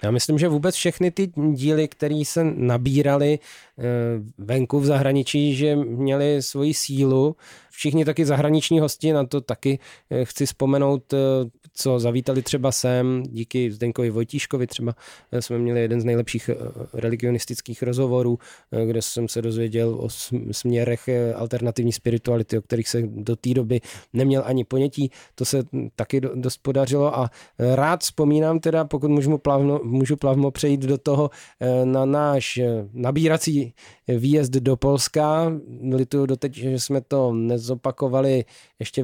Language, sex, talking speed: Czech, male, 135 wpm